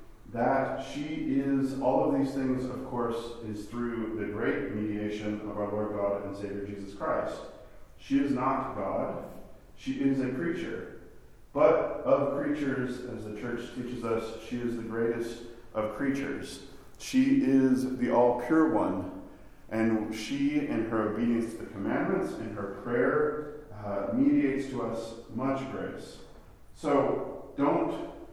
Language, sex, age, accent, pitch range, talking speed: English, male, 40-59, American, 105-130 Hz, 145 wpm